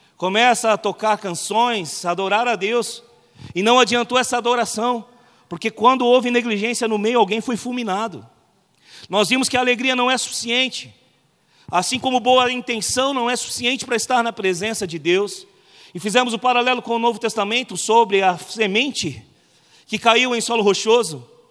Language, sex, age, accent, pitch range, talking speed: Portuguese, male, 40-59, Brazilian, 190-245 Hz, 160 wpm